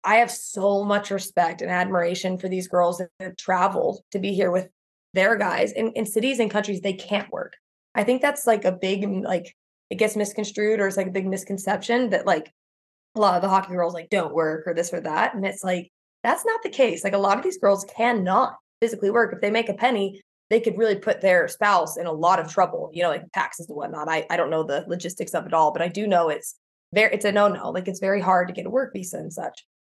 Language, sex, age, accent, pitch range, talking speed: English, female, 20-39, American, 180-215 Hz, 250 wpm